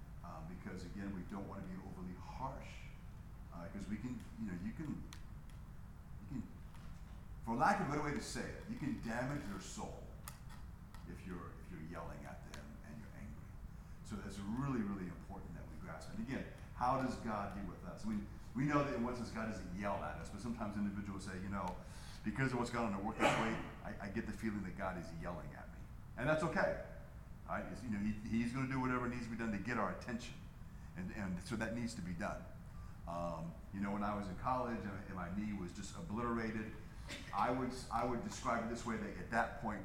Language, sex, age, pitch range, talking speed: English, male, 40-59, 90-115 Hz, 230 wpm